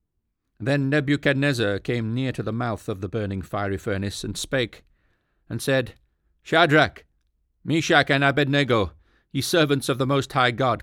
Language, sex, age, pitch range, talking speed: English, male, 40-59, 95-130 Hz, 150 wpm